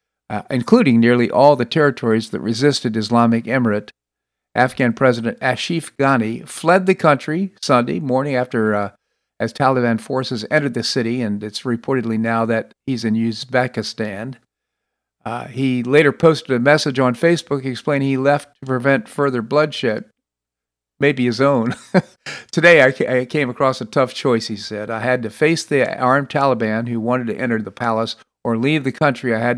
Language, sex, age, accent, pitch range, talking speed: English, male, 50-69, American, 110-140 Hz, 165 wpm